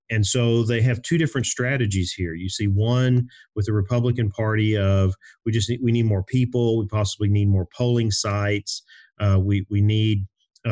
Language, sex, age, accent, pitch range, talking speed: English, male, 40-59, American, 95-115 Hz, 185 wpm